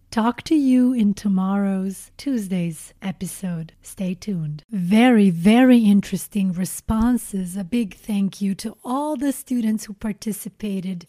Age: 30-49